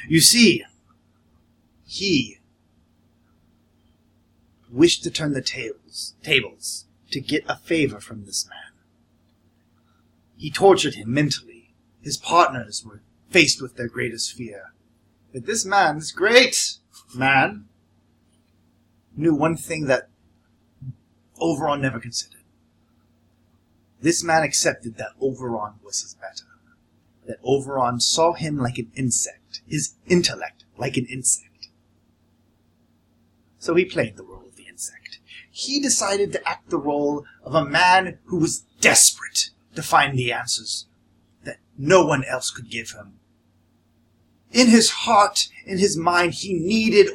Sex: male